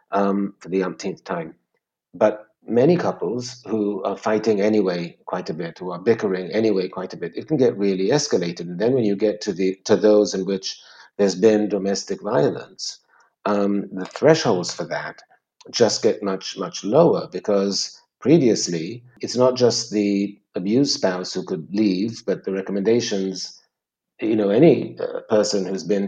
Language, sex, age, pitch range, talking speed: English, male, 60-79, 95-115 Hz, 170 wpm